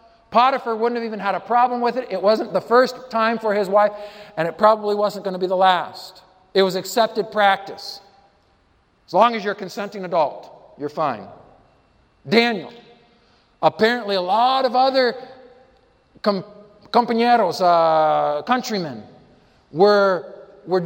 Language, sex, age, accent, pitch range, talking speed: English, male, 50-69, American, 150-235 Hz, 145 wpm